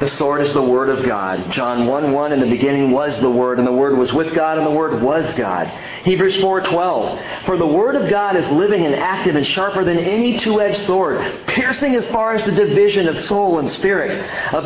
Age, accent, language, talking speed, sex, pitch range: 40-59, American, English, 220 wpm, male, 115-160 Hz